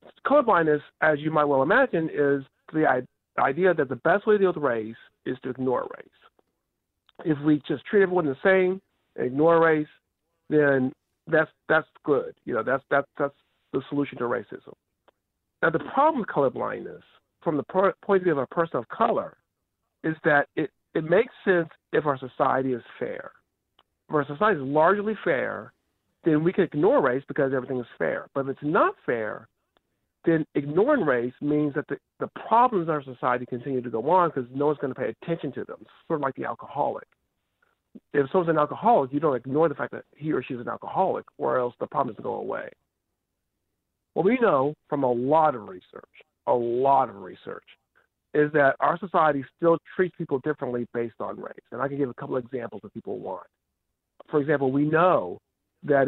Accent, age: American, 50-69